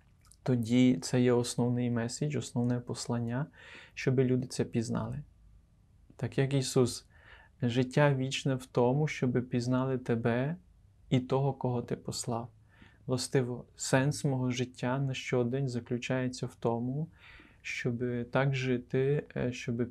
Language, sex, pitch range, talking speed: Ukrainian, male, 120-130 Hz, 120 wpm